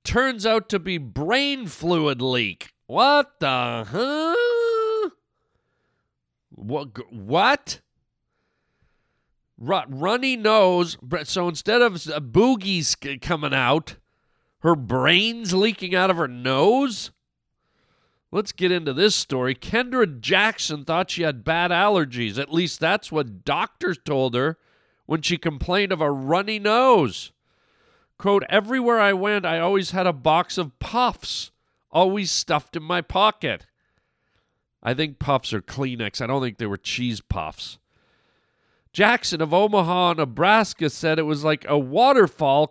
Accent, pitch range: American, 140-205 Hz